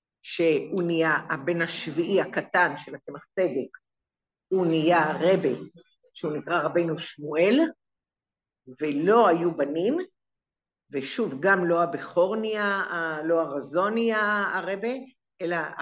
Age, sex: 50-69, female